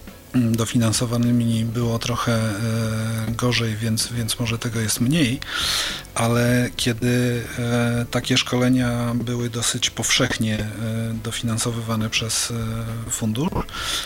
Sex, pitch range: male, 115-130 Hz